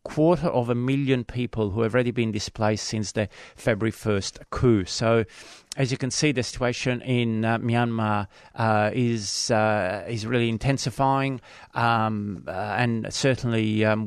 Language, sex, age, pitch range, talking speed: English, male, 40-59, 110-130 Hz, 155 wpm